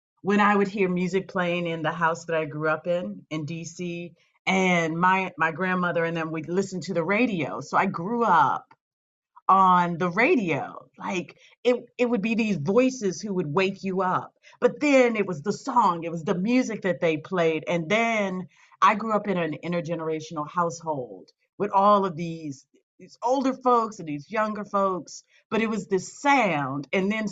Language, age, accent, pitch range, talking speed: English, 40-59, American, 165-210 Hz, 190 wpm